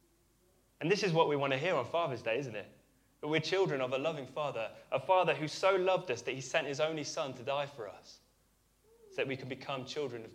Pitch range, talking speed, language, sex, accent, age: 115-145 Hz, 250 wpm, English, male, British, 20-39